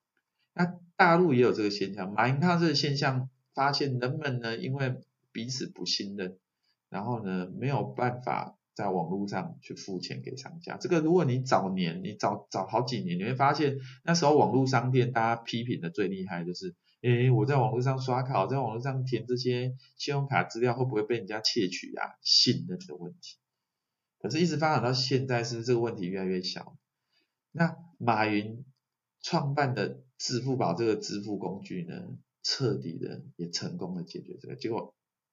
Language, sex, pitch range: Chinese, male, 105-140 Hz